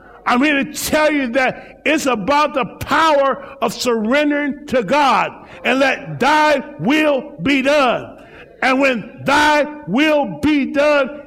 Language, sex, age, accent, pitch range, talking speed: English, male, 50-69, American, 260-300 Hz, 140 wpm